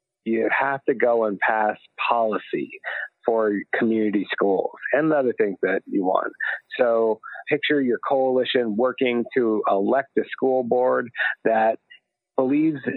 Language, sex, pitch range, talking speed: English, male, 110-135 Hz, 130 wpm